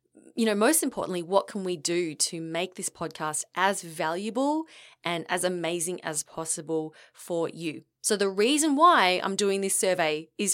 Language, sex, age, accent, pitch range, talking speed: English, female, 20-39, Australian, 170-230 Hz, 170 wpm